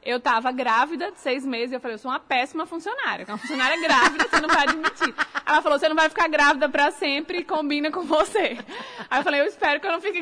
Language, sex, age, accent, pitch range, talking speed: Portuguese, female, 20-39, Brazilian, 250-320 Hz, 255 wpm